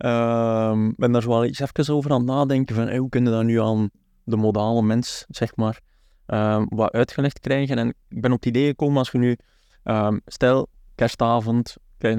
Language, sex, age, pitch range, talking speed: Dutch, male, 20-39, 105-120 Hz, 210 wpm